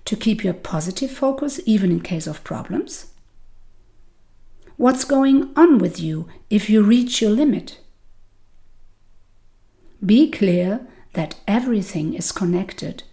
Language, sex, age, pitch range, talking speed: English, female, 50-69, 150-240 Hz, 120 wpm